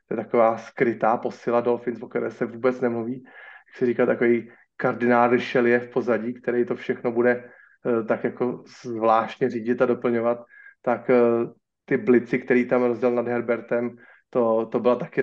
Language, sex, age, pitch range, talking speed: Slovak, male, 30-49, 115-130 Hz, 160 wpm